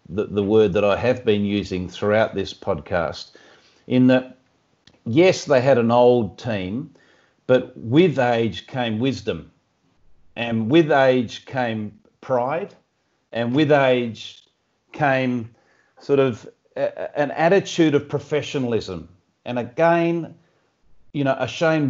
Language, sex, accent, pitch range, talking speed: English, male, Australian, 115-145 Hz, 125 wpm